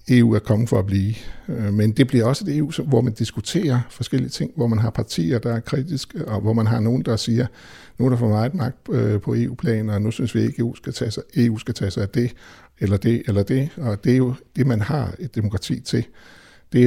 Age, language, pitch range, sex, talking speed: 60-79, Danish, 105-125 Hz, male, 250 wpm